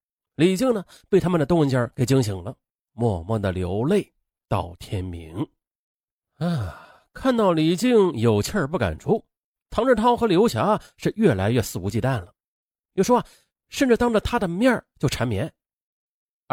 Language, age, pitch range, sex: Chinese, 30-49, 115-185 Hz, male